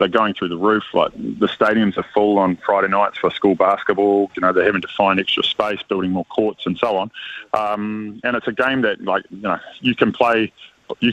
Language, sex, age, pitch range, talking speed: English, male, 20-39, 95-110 Hz, 230 wpm